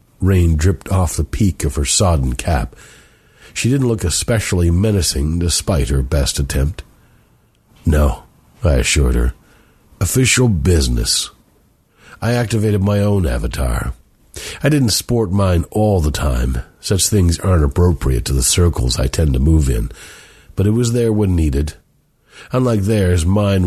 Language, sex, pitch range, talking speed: English, male, 80-105 Hz, 145 wpm